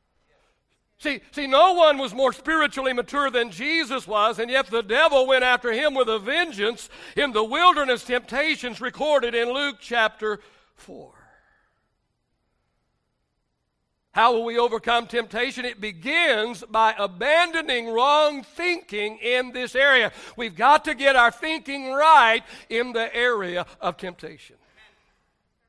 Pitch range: 210-275 Hz